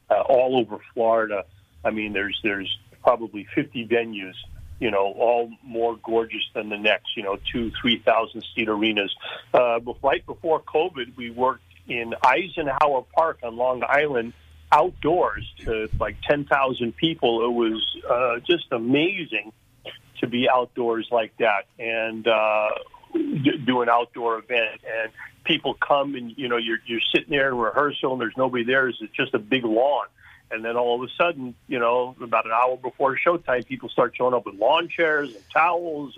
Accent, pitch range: American, 110-130 Hz